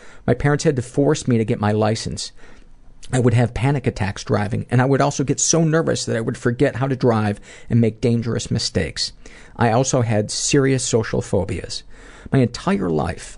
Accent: American